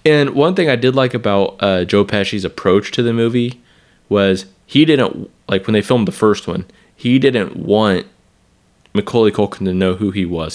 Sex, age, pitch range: male, 20-39, 95-115 Hz